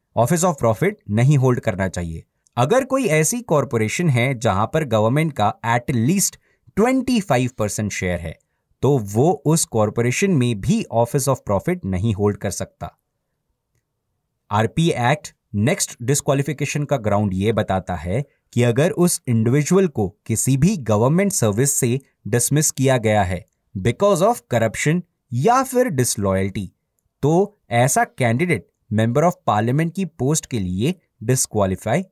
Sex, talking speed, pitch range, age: male, 140 wpm, 110-165 Hz, 30-49